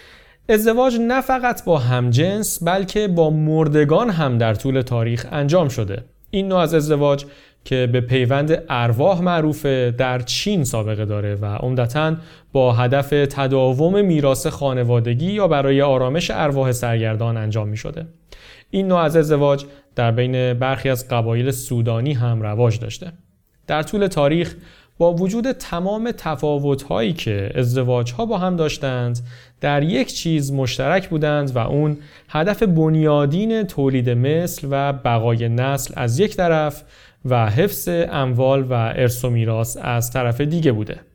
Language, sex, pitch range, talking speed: Persian, male, 125-170 Hz, 140 wpm